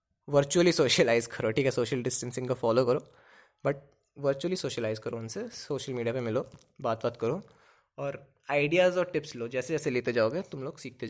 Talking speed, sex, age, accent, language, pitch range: 185 wpm, male, 20-39, native, Hindi, 125-150 Hz